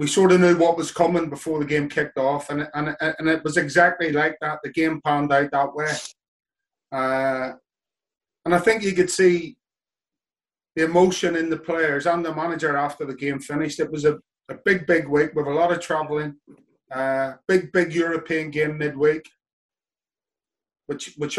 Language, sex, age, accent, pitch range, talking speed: English, male, 30-49, British, 145-170 Hz, 175 wpm